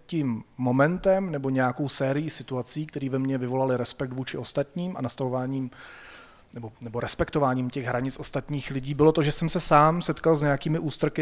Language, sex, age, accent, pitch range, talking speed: Czech, male, 30-49, native, 125-150 Hz, 170 wpm